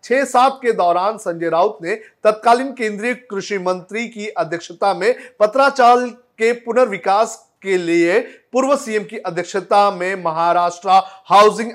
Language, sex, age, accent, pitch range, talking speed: Hindi, male, 40-59, native, 170-220 Hz, 135 wpm